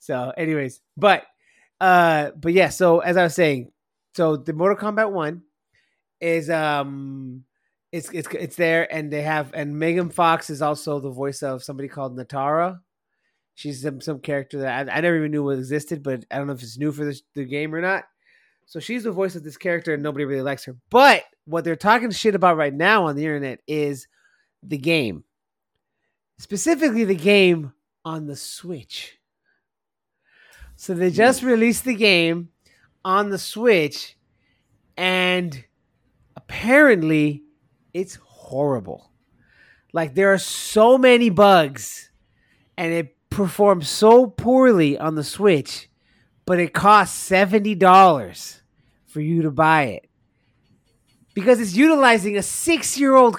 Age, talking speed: 30-49, 150 wpm